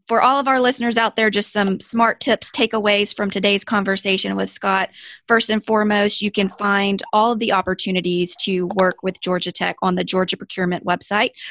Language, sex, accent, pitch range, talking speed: English, female, American, 180-210 Hz, 190 wpm